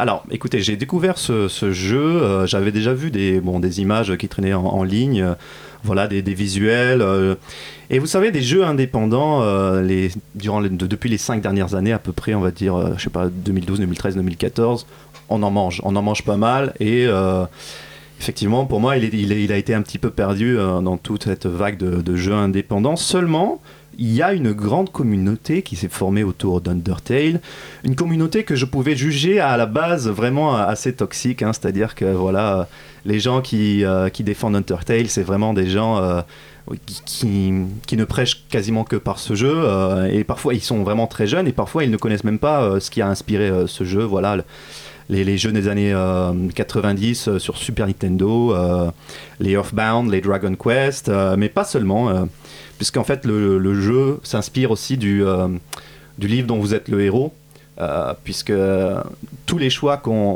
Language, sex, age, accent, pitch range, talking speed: French, male, 30-49, French, 95-125 Hz, 205 wpm